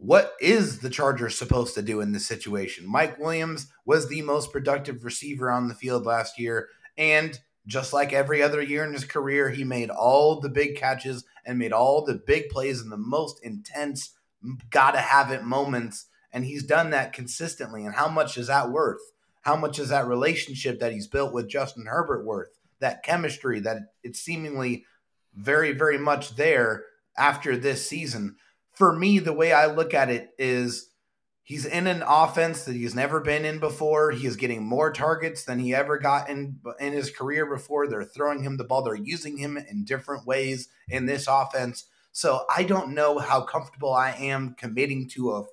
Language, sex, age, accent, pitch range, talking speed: English, male, 30-49, American, 125-155 Hz, 190 wpm